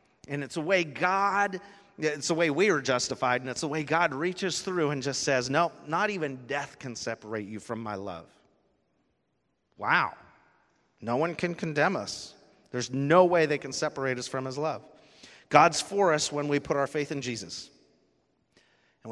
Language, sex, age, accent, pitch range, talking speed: English, male, 40-59, American, 125-150 Hz, 180 wpm